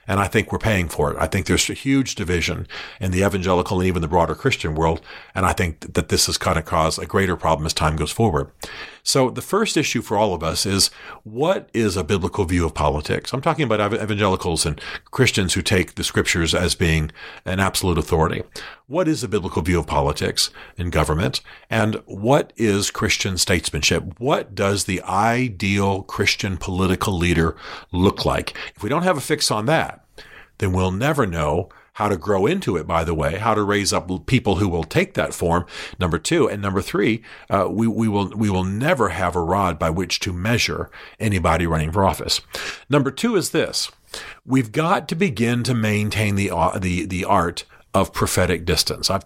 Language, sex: English, male